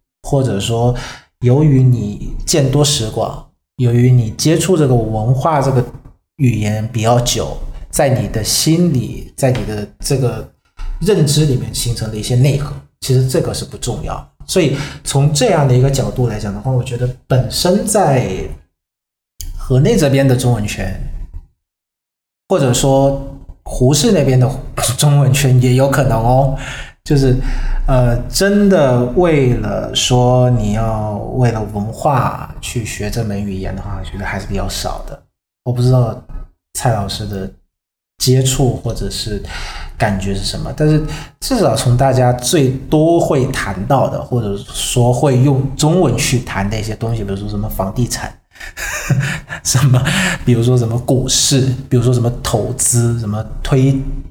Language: Vietnamese